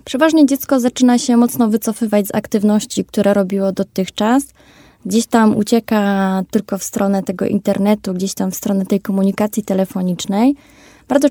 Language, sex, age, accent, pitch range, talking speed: Polish, female, 20-39, native, 200-230 Hz, 145 wpm